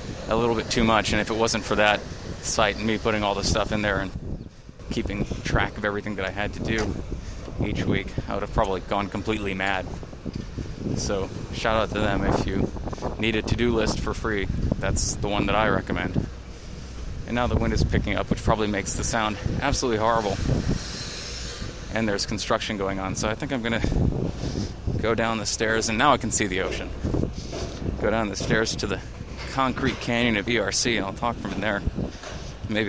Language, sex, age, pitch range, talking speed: English, male, 20-39, 100-115 Hz, 200 wpm